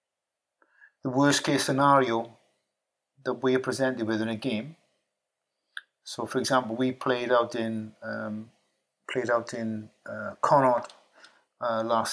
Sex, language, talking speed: male, English, 130 wpm